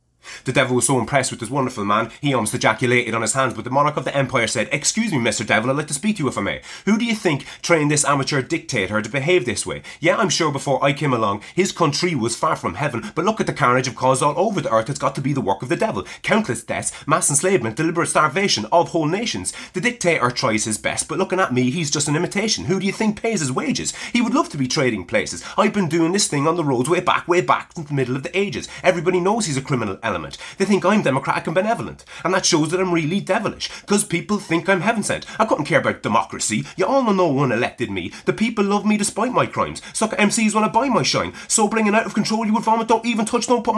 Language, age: English, 30-49